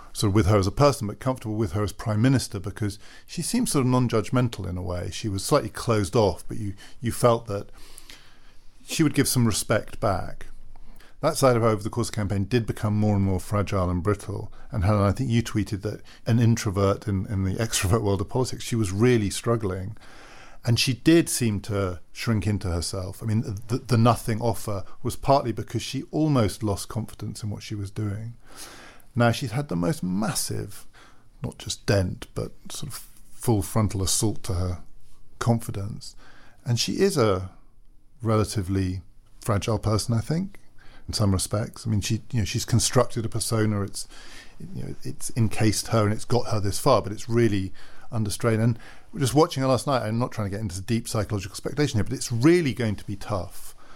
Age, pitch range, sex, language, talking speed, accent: 50-69, 100-120 Hz, male, English, 200 wpm, British